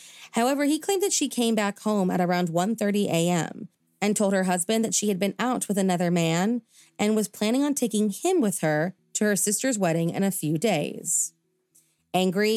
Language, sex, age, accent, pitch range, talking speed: English, female, 30-49, American, 170-215 Hz, 195 wpm